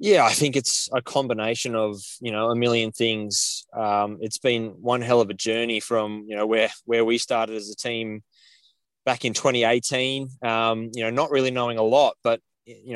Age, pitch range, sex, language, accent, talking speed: 20-39, 105-120 Hz, male, English, Australian, 200 wpm